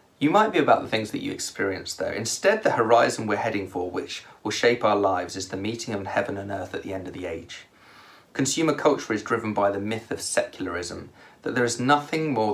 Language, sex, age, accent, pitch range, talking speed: English, male, 30-49, British, 95-120 Hz, 230 wpm